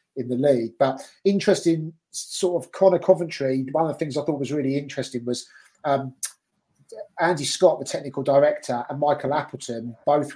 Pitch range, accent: 130-150 Hz, British